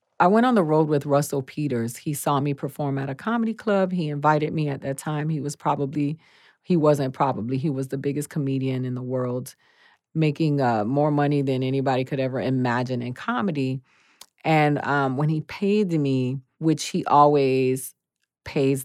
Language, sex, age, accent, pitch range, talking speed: English, female, 40-59, American, 130-150 Hz, 180 wpm